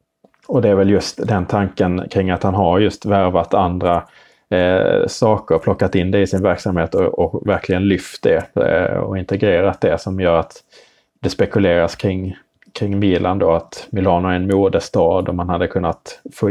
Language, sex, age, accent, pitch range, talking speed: Swedish, male, 30-49, Norwegian, 90-100 Hz, 185 wpm